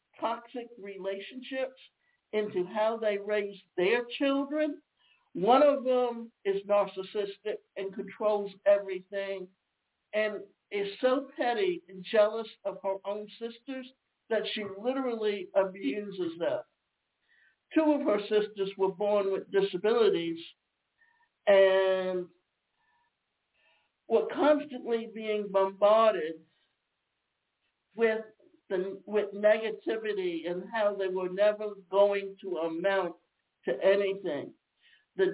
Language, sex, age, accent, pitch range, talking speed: English, male, 60-79, American, 195-255 Hz, 100 wpm